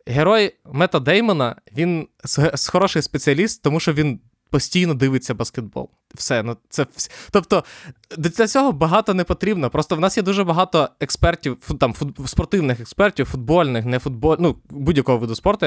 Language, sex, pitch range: Ukrainian, male, 120-155 Hz